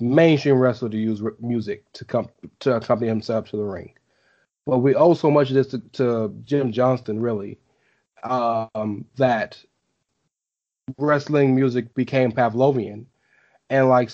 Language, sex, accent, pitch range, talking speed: English, male, American, 120-150 Hz, 140 wpm